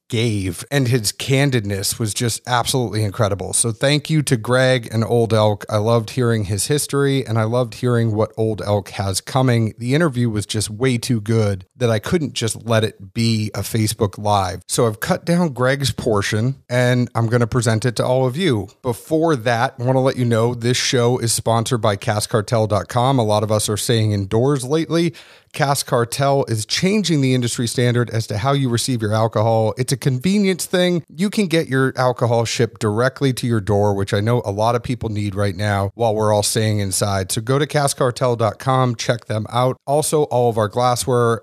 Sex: male